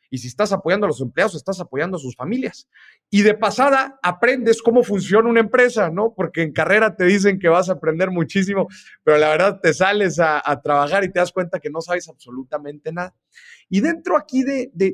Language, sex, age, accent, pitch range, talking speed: Spanish, male, 40-59, Mexican, 155-225 Hz, 215 wpm